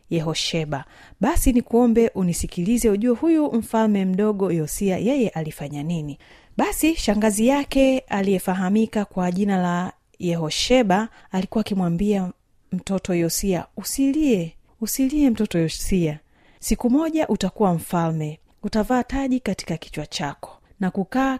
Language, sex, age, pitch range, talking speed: Swahili, female, 30-49, 175-235 Hz, 110 wpm